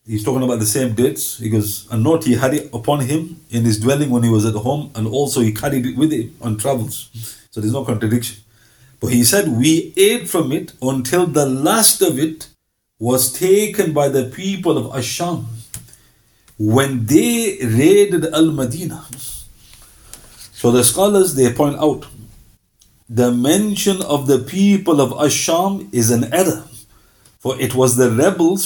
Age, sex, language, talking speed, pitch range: 50-69, male, English, 170 wpm, 110-150 Hz